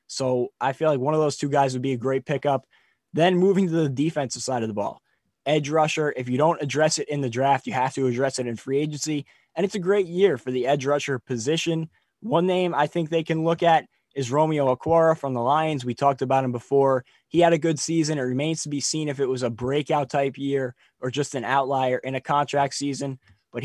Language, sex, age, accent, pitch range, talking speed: English, male, 20-39, American, 130-155 Hz, 245 wpm